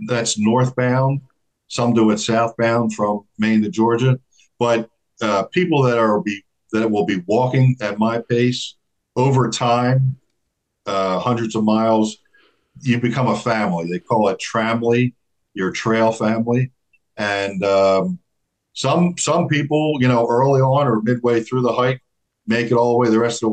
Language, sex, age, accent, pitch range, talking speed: English, male, 50-69, American, 110-130 Hz, 160 wpm